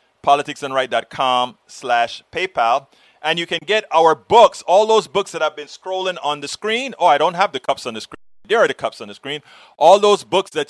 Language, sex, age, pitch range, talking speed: English, male, 30-49, 130-180 Hz, 220 wpm